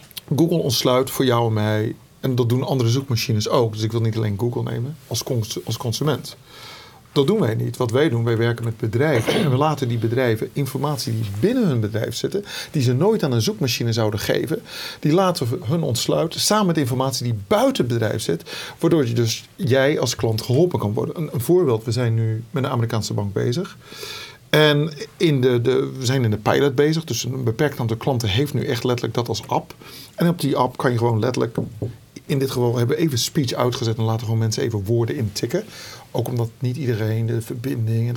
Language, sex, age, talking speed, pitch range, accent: Dutch, male, 40-59, 210 wpm, 115-140 Hz, Dutch